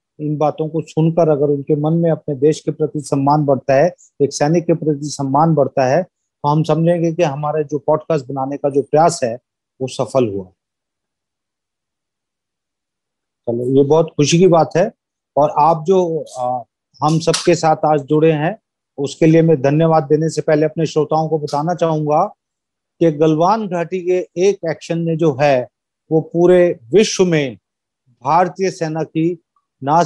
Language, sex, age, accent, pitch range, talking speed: Hindi, male, 30-49, native, 150-175 Hz, 170 wpm